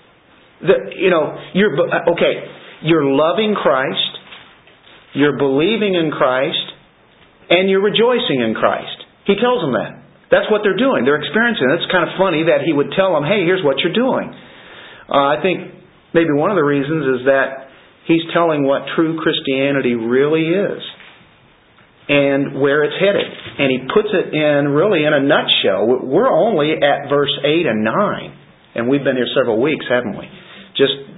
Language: English